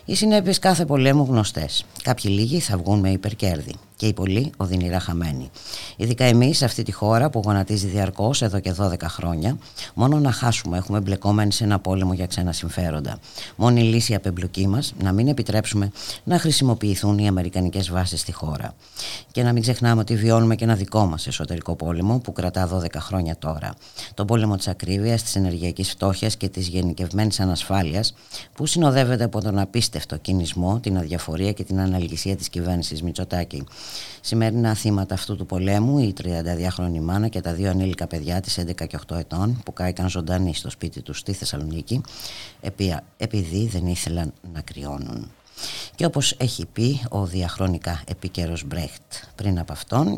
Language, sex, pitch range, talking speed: Greek, female, 90-115 Hz, 165 wpm